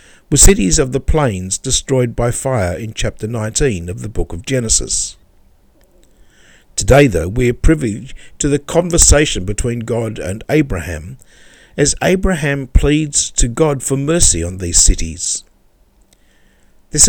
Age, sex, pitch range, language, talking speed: 60-79, male, 100-135 Hz, English, 135 wpm